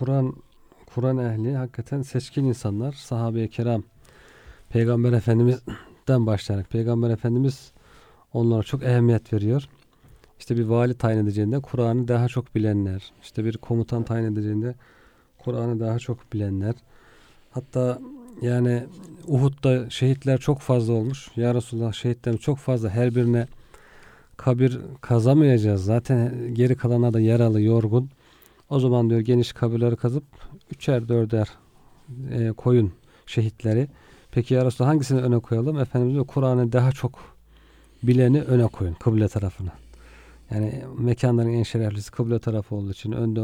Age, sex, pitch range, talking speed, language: 40-59, male, 115-130 Hz, 125 wpm, Turkish